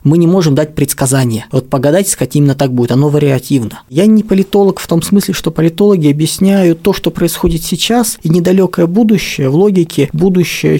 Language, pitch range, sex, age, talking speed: Russian, 135-165 Hz, male, 20-39, 180 wpm